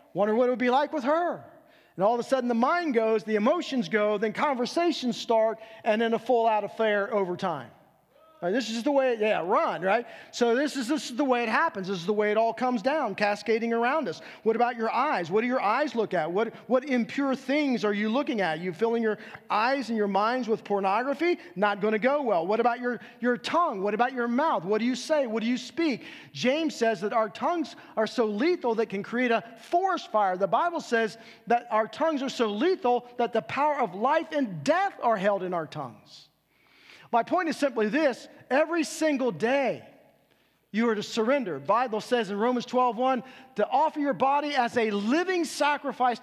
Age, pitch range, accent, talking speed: 40-59, 215-270 Hz, American, 215 wpm